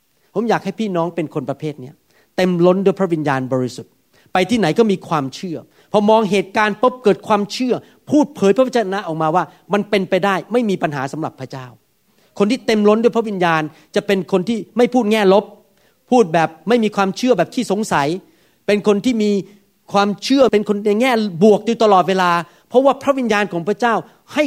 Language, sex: Thai, male